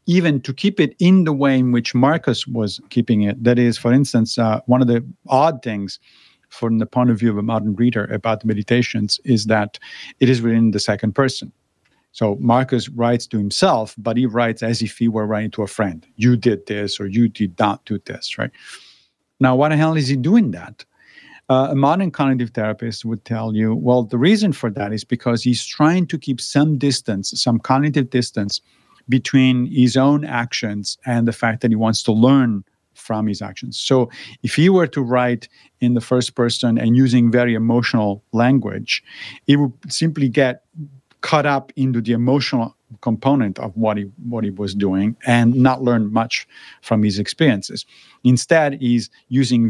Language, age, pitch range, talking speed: English, 50-69, 110-130 Hz, 190 wpm